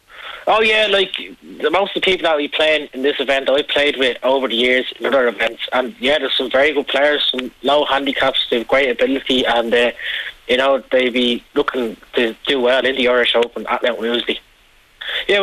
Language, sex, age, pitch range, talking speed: English, male, 20-39, 120-135 Hz, 215 wpm